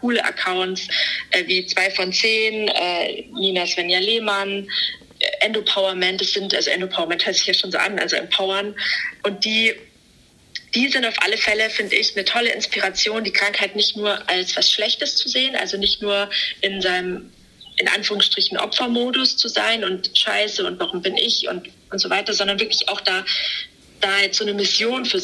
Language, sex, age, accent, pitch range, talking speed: German, female, 30-49, German, 190-220 Hz, 175 wpm